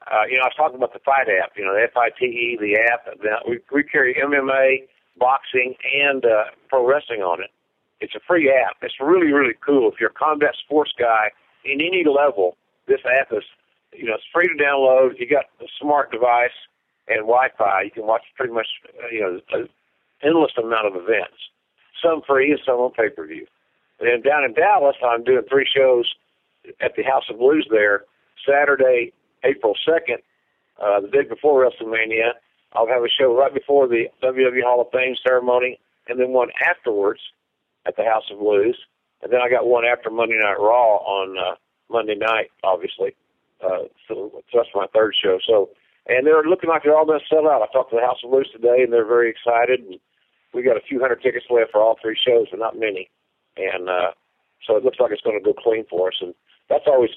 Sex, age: male, 50-69